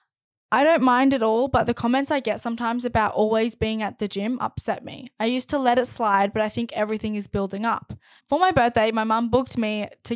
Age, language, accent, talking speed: 10-29, English, Australian, 235 wpm